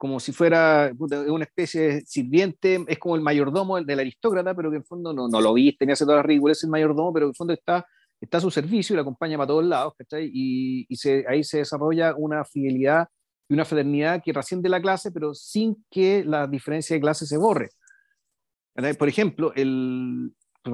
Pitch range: 140-175 Hz